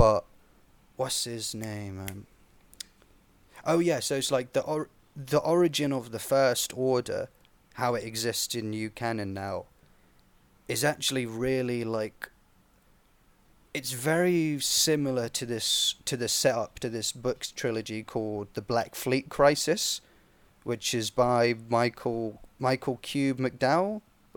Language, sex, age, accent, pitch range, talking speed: English, male, 30-49, British, 105-130 Hz, 130 wpm